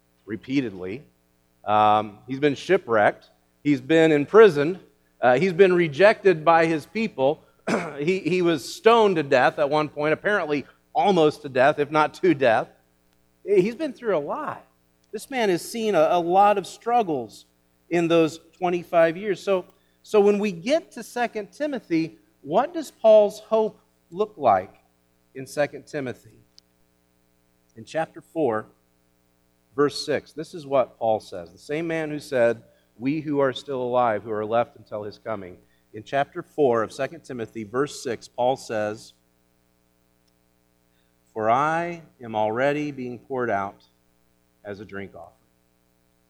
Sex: male